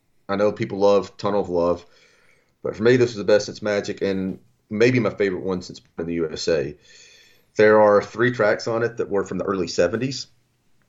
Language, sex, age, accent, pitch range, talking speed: English, male, 30-49, American, 100-115 Hz, 210 wpm